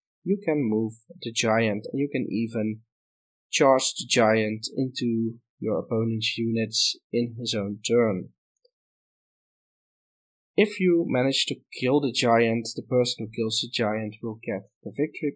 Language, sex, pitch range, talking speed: English, male, 110-130 Hz, 145 wpm